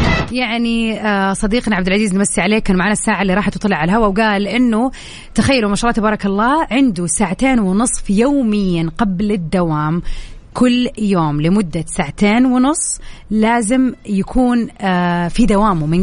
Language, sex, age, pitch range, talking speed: Arabic, female, 30-49, 185-240 Hz, 140 wpm